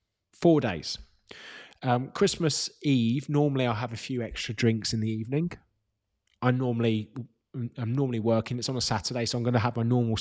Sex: male